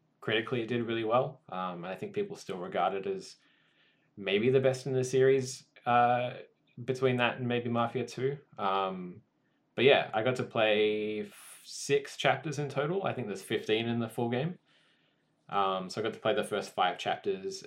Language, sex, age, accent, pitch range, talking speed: English, male, 20-39, Australian, 100-135 Hz, 185 wpm